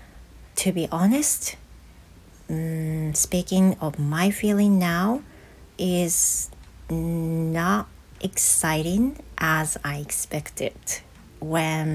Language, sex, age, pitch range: Japanese, female, 40-59, 150-190 Hz